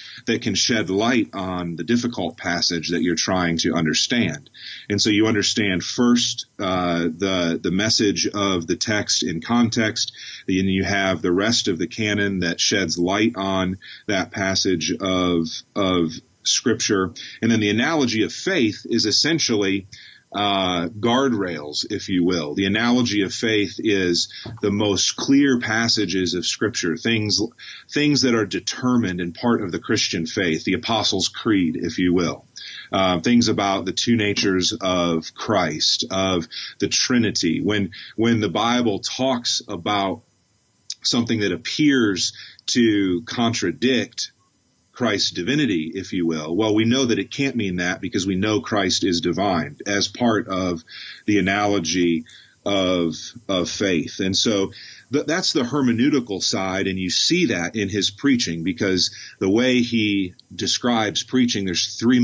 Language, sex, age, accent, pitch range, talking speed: English, male, 40-59, American, 90-115 Hz, 150 wpm